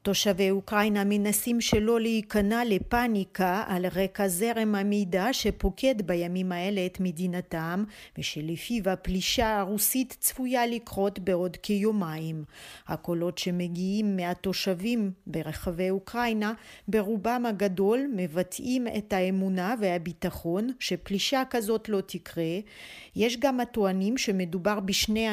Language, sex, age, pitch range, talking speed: Hebrew, female, 40-59, 185-220 Hz, 100 wpm